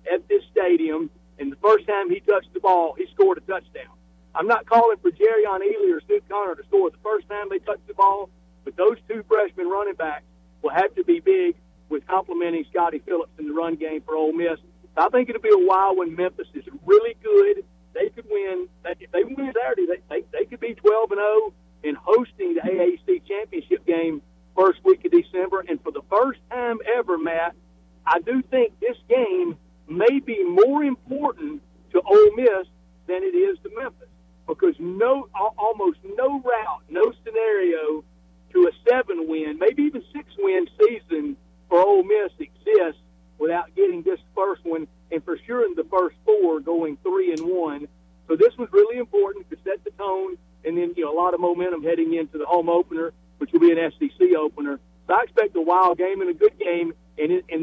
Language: English